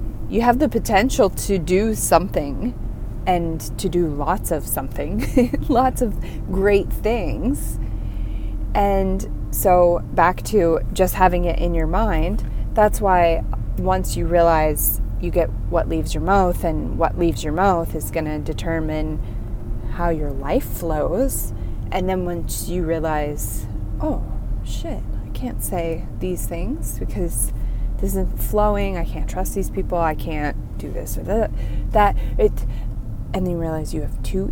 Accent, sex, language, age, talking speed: American, female, English, 20-39, 150 wpm